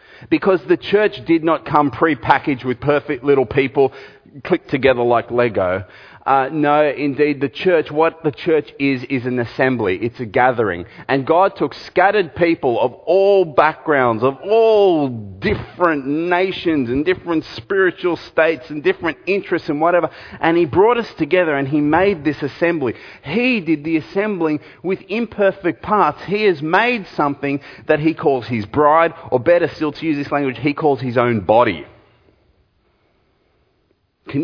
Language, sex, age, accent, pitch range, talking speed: English, male, 30-49, Australian, 120-165 Hz, 155 wpm